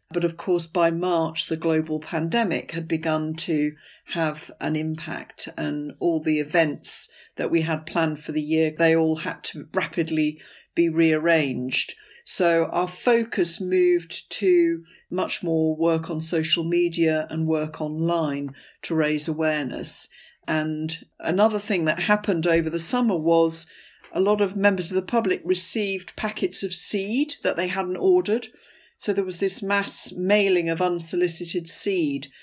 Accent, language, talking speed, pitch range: British, English, 150 wpm, 160-185 Hz